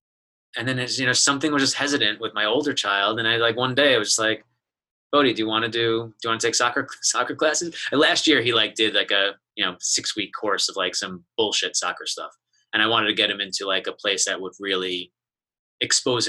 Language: English